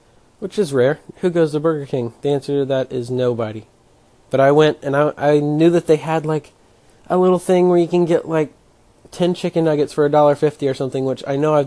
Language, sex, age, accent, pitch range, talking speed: English, male, 20-39, American, 130-155 Hz, 225 wpm